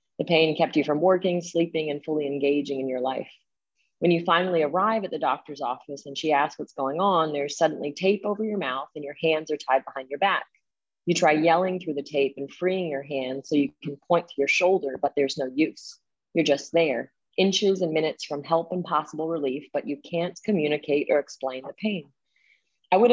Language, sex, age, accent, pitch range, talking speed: English, female, 30-49, American, 140-170 Hz, 215 wpm